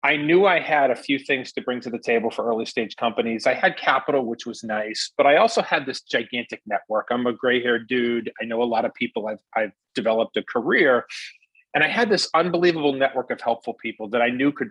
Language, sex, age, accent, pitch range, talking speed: English, male, 30-49, American, 125-155 Hz, 235 wpm